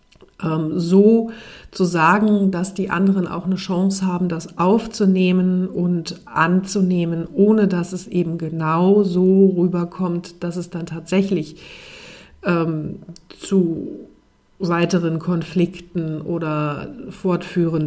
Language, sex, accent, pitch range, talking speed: German, female, German, 170-200 Hz, 105 wpm